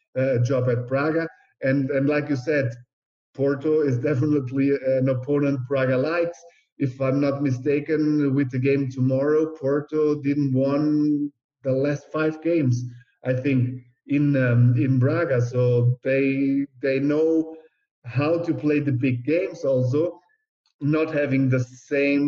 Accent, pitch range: German, 125-145 Hz